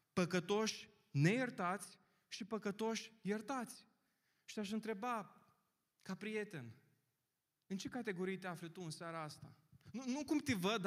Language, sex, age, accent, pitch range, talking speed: Romanian, male, 20-39, native, 170-240 Hz, 135 wpm